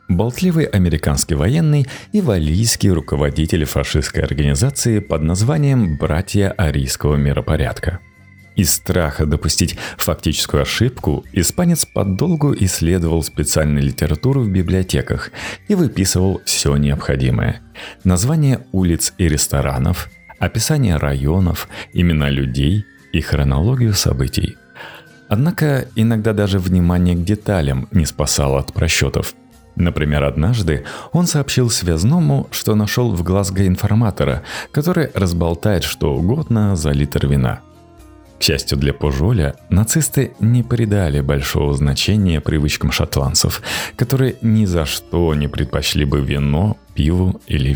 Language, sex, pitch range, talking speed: Russian, male, 75-110 Hz, 110 wpm